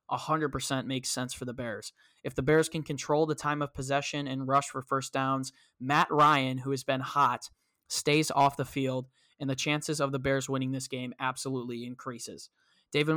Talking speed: 195 wpm